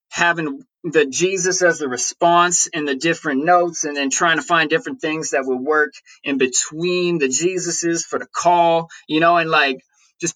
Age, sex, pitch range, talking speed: 20-39, male, 135-175 Hz, 185 wpm